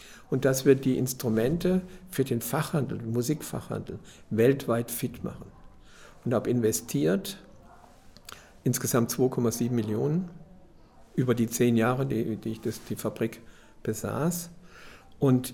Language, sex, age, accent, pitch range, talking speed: German, male, 60-79, German, 120-140 Hz, 120 wpm